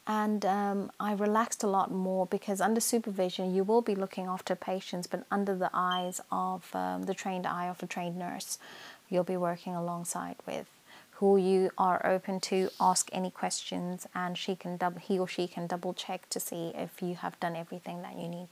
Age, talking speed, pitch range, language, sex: 30-49, 200 wpm, 180-205 Hz, English, female